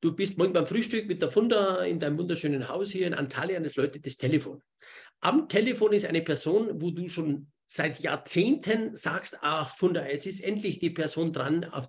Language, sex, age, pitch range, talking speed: German, male, 50-69, 145-195 Hz, 200 wpm